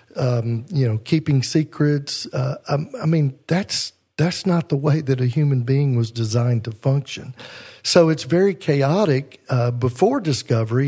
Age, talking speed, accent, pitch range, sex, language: 50-69, 160 wpm, American, 120-140 Hz, male, English